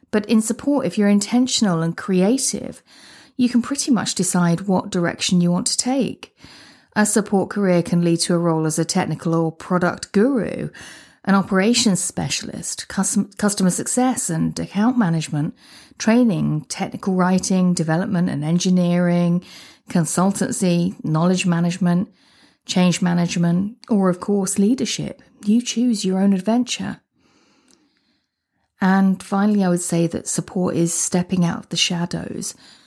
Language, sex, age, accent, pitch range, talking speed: English, female, 40-59, British, 165-205 Hz, 135 wpm